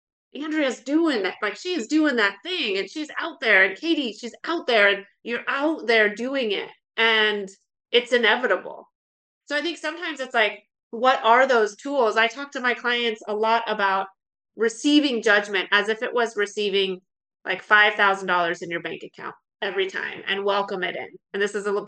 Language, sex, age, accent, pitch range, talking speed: English, female, 30-49, American, 205-280 Hz, 185 wpm